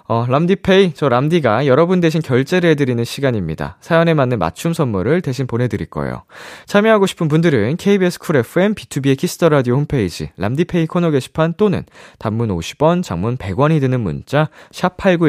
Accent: native